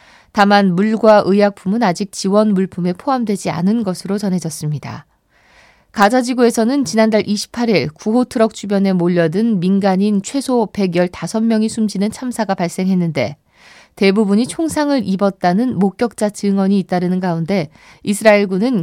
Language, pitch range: Korean, 180-225 Hz